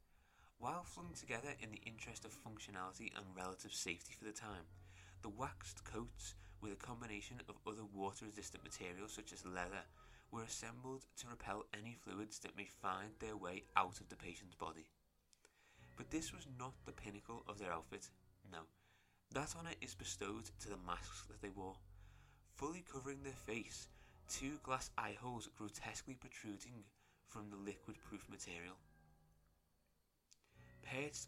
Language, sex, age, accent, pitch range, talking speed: English, male, 20-39, British, 90-115 Hz, 150 wpm